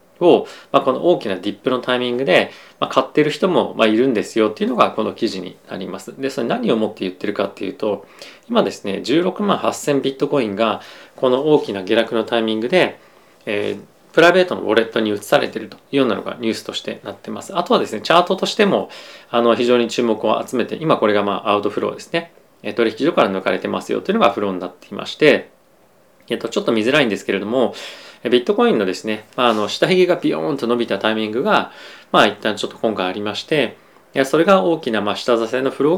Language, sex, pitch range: Japanese, male, 105-135 Hz